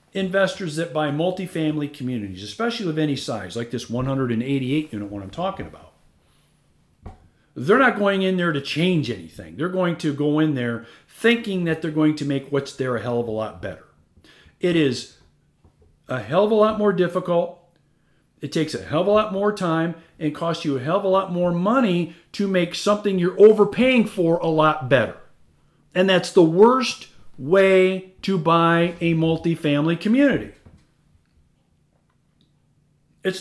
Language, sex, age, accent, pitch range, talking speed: English, male, 40-59, American, 145-195 Hz, 165 wpm